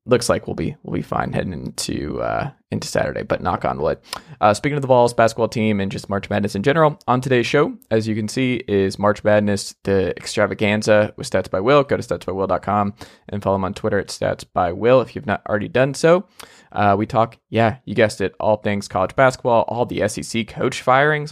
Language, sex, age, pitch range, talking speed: English, male, 20-39, 105-125 Hz, 215 wpm